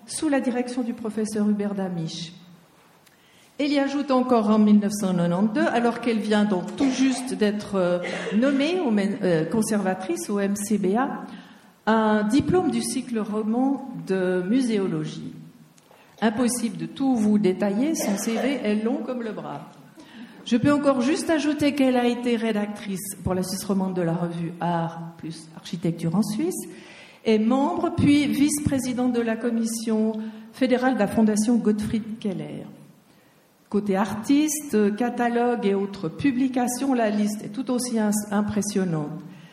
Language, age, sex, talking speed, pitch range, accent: French, 50-69, female, 135 wpm, 195-255 Hz, French